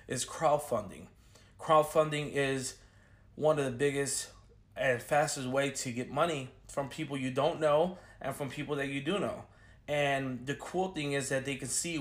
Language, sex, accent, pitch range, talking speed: English, male, American, 120-150 Hz, 175 wpm